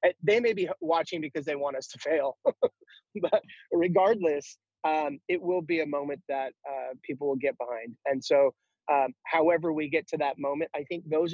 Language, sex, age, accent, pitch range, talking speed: English, male, 30-49, American, 135-160 Hz, 190 wpm